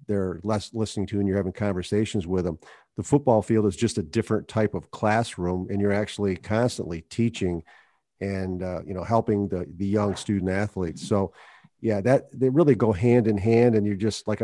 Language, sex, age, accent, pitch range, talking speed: English, male, 50-69, American, 100-115 Hz, 200 wpm